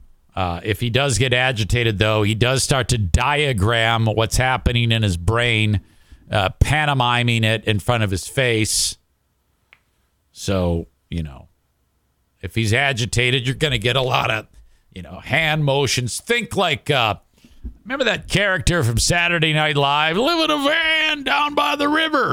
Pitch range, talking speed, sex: 90-135 Hz, 160 wpm, male